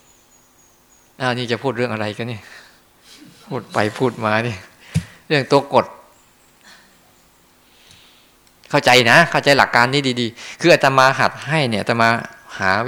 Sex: male